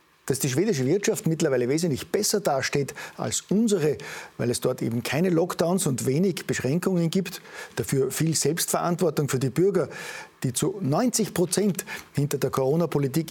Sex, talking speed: male, 150 wpm